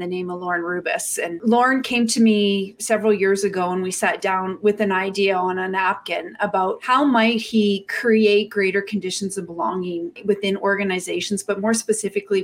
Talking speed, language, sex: 180 wpm, English, female